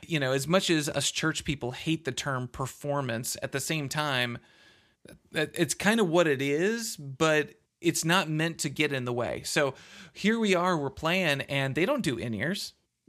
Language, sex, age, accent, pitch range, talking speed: English, male, 30-49, American, 135-165 Hz, 195 wpm